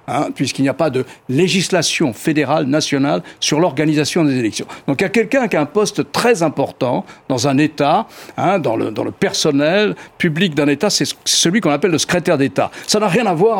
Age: 60-79